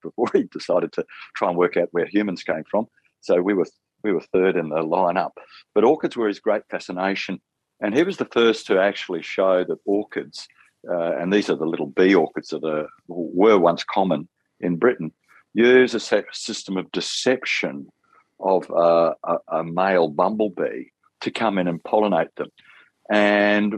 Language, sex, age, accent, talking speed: English, male, 50-69, Australian, 175 wpm